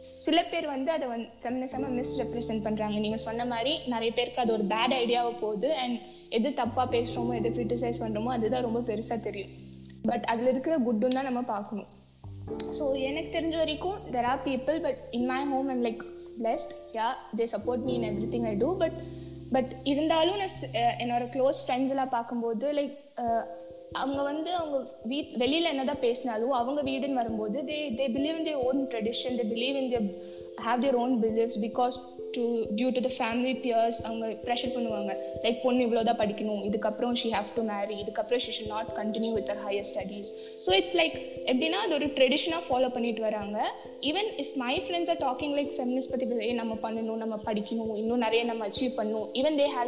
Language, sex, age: English, female, 20-39